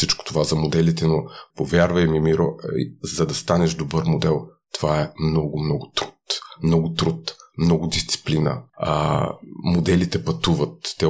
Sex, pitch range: male, 80-95 Hz